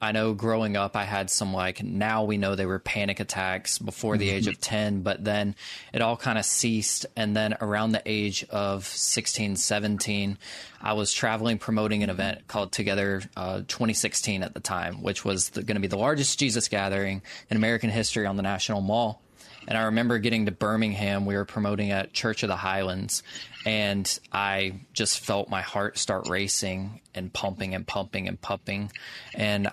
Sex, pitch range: male, 100-110 Hz